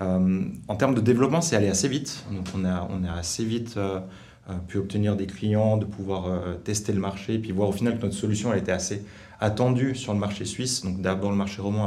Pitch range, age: 95-110 Hz, 30-49